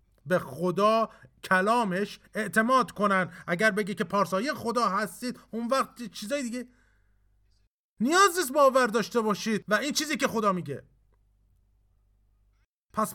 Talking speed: 115 wpm